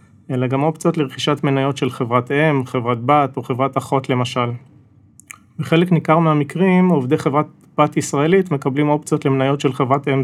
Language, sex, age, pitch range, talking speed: Hebrew, male, 30-49, 130-150 Hz, 160 wpm